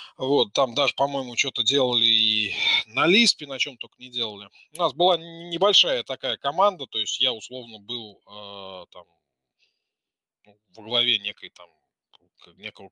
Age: 20-39